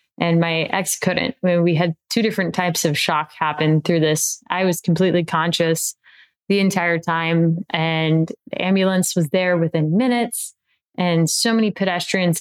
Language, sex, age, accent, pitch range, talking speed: English, female, 20-39, American, 165-185 Hz, 155 wpm